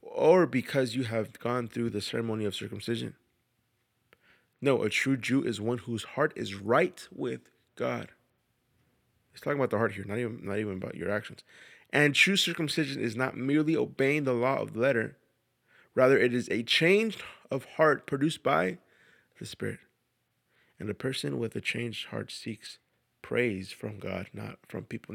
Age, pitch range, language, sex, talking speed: 20-39, 115-160 Hz, English, male, 170 wpm